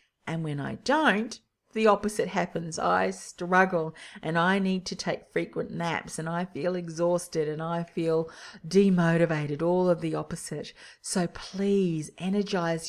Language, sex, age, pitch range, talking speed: English, female, 40-59, 155-195 Hz, 145 wpm